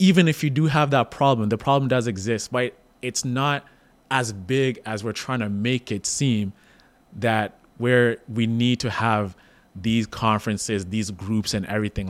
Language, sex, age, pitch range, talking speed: English, male, 20-39, 105-125 Hz, 175 wpm